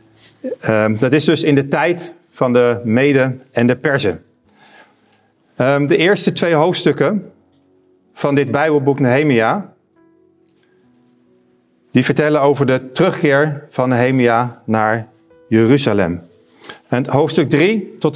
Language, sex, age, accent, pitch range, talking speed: Dutch, male, 50-69, Dutch, 120-155 Hz, 115 wpm